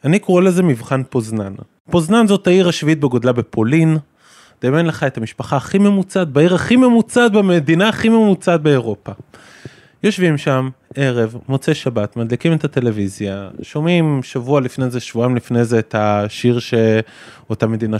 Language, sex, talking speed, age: Hebrew, male, 145 wpm, 20-39